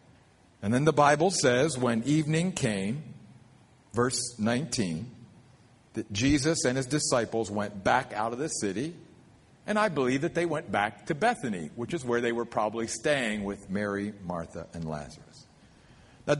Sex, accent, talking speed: male, American, 155 wpm